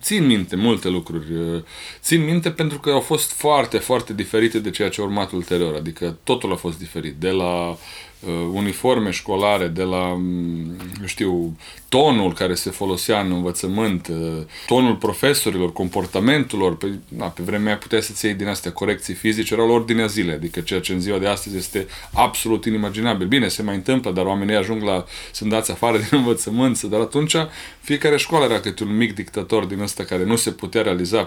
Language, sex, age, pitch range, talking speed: Romanian, male, 30-49, 90-130 Hz, 175 wpm